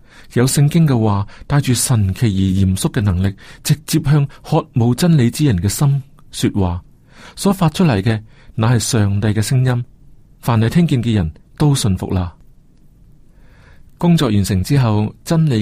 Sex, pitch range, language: male, 105-150 Hz, Chinese